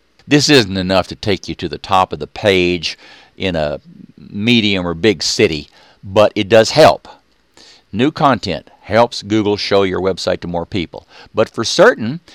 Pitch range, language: 95-120 Hz, English